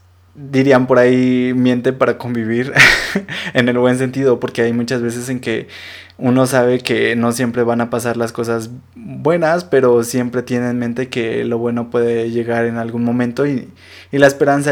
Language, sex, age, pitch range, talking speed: Spanish, male, 20-39, 115-135 Hz, 185 wpm